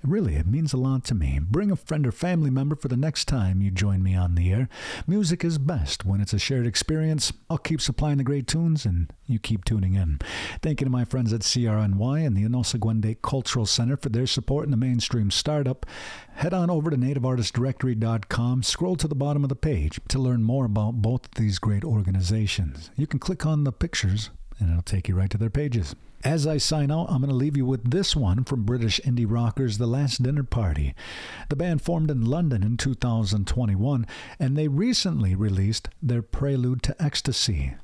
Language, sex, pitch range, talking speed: English, male, 105-140 Hz, 210 wpm